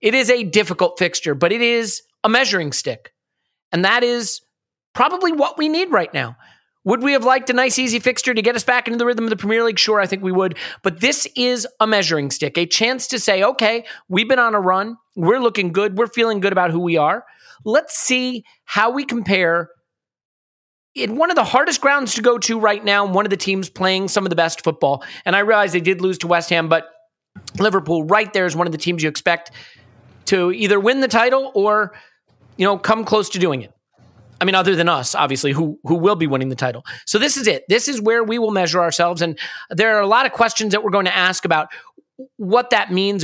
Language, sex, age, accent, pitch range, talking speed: English, male, 40-59, American, 165-230 Hz, 235 wpm